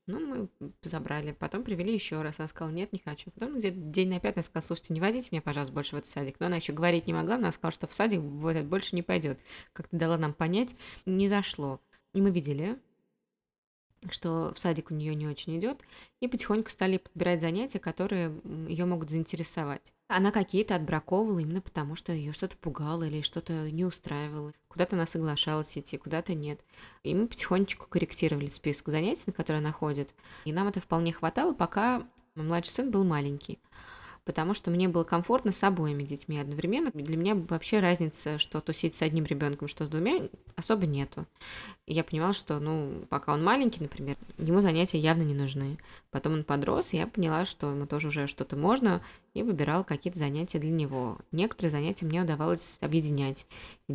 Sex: female